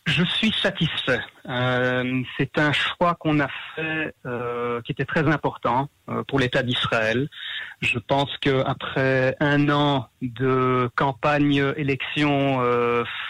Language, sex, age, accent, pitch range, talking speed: French, male, 30-49, French, 130-155 Hz, 125 wpm